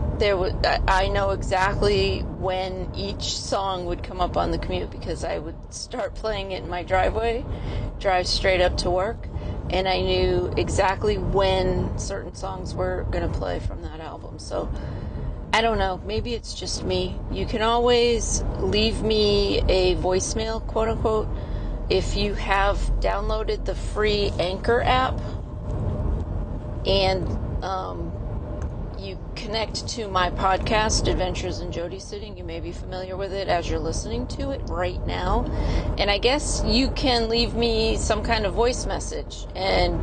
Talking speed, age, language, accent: 155 wpm, 30-49, English, American